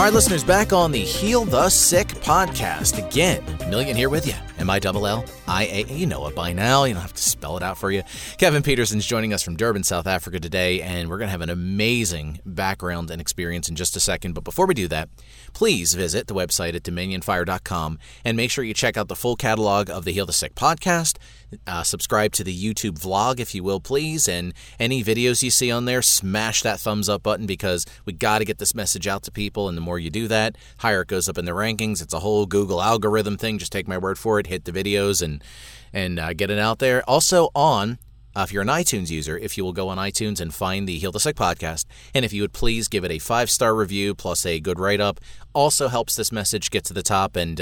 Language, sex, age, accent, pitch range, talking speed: English, male, 30-49, American, 90-110 Hz, 245 wpm